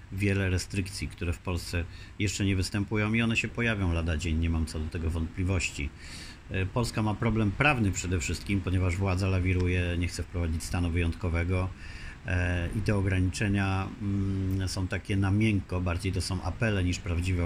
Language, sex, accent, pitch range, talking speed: Polish, male, native, 90-105 Hz, 160 wpm